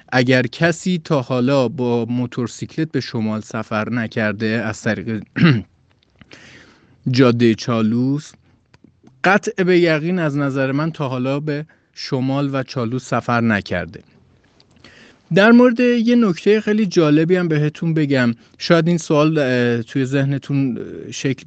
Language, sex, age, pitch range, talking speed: Persian, male, 30-49, 120-165 Hz, 120 wpm